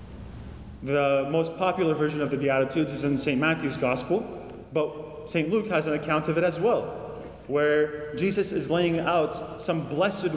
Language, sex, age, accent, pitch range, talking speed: English, male, 30-49, American, 140-175 Hz, 170 wpm